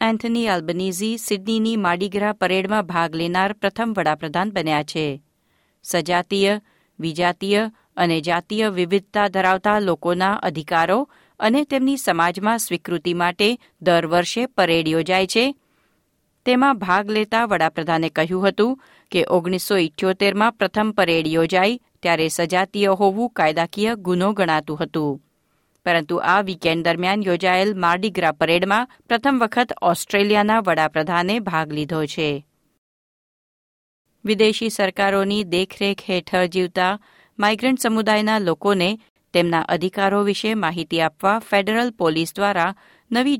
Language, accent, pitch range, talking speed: Gujarati, native, 170-215 Hz, 110 wpm